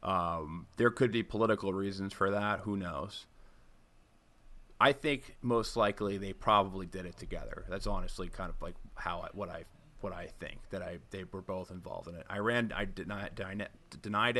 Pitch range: 95-105 Hz